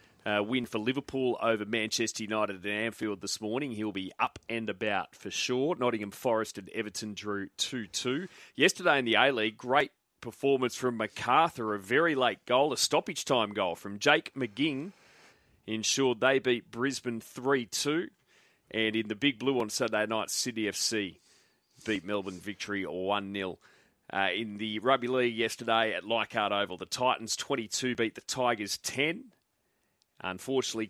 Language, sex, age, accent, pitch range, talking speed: English, male, 30-49, Australian, 100-120 Hz, 155 wpm